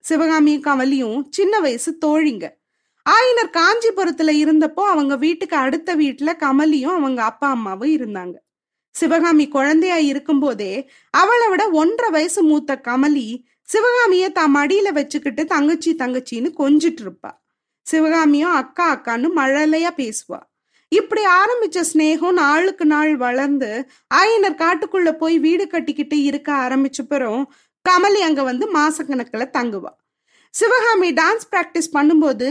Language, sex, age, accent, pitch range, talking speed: Tamil, female, 20-39, native, 275-350 Hz, 115 wpm